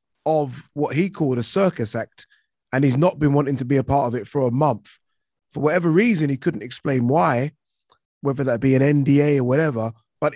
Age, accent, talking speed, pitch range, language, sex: 20-39, British, 210 wpm, 125-155 Hz, English, male